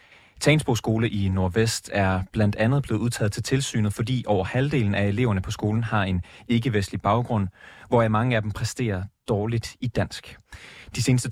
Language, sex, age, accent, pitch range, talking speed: Danish, male, 30-49, native, 100-120 Hz, 165 wpm